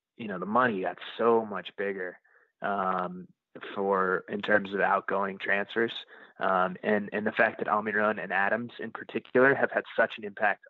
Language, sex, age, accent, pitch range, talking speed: English, male, 20-39, American, 110-150 Hz, 175 wpm